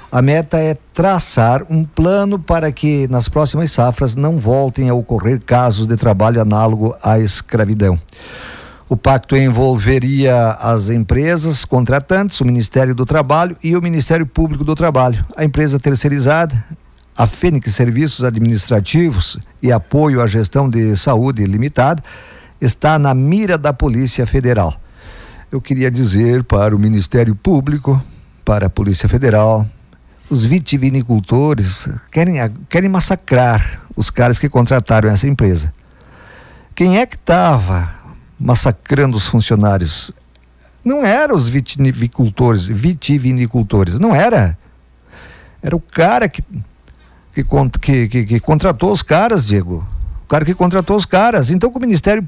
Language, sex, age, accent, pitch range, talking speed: Portuguese, male, 50-69, Brazilian, 110-155 Hz, 130 wpm